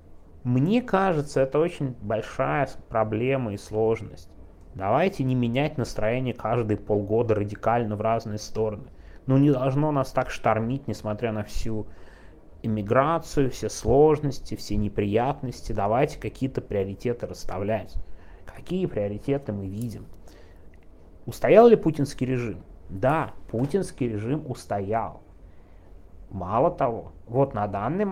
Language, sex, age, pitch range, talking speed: Russian, male, 30-49, 100-135 Hz, 115 wpm